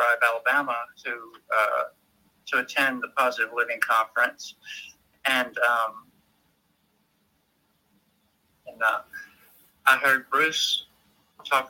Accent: American